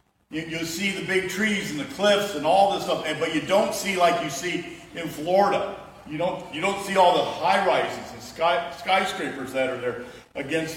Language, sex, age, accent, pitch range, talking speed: English, male, 50-69, American, 155-185 Hz, 210 wpm